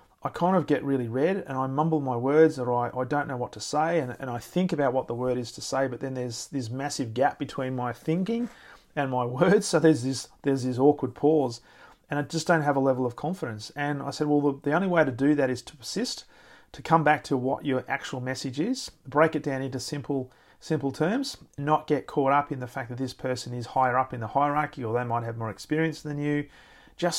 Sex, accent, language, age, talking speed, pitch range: male, Australian, English, 40-59, 250 wpm, 130-155 Hz